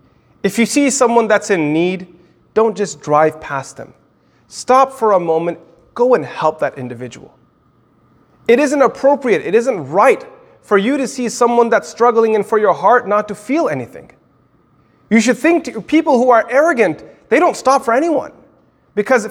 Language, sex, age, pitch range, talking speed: English, male, 30-49, 190-255 Hz, 175 wpm